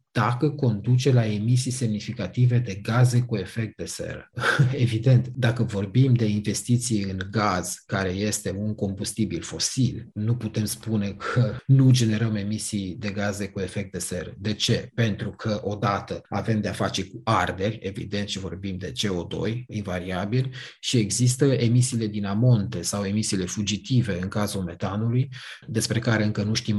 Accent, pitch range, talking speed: native, 100-120 Hz, 150 wpm